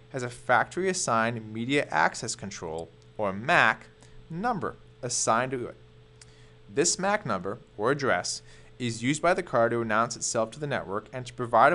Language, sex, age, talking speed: English, male, 20-39, 160 wpm